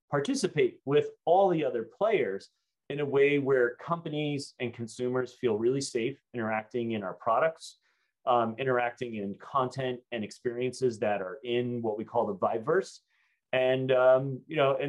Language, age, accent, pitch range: English, 30-49, American, 110-140 Hz